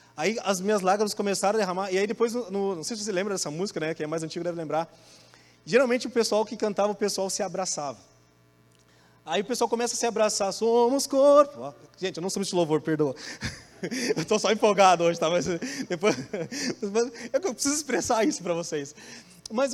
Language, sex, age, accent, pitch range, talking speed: Portuguese, male, 20-39, Brazilian, 185-235 Hz, 200 wpm